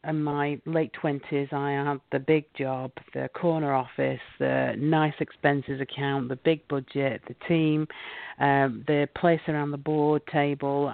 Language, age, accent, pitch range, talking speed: English, 40-59, British, 145-170 Hz, 155 wpm